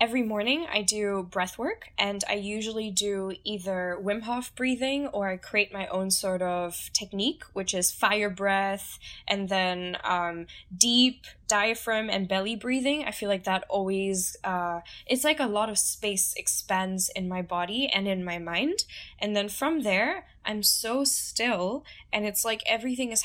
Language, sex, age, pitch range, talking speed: English, female, 10-29, 185-215 Hz, 170 wpm